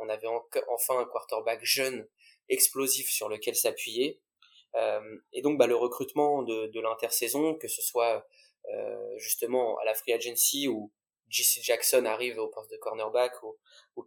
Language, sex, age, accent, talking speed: French, male, 20-39, French, 160 wpm